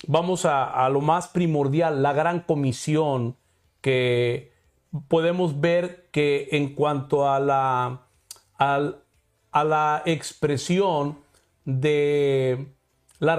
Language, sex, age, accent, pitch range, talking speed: Spanish, male, 50-69, Mexican, 140-180 Hz, 105 wpm